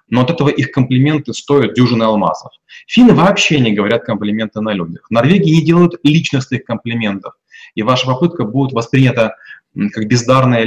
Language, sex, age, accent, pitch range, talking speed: Russian, male, 20-39, native, 115-140 Hz, 155 wpm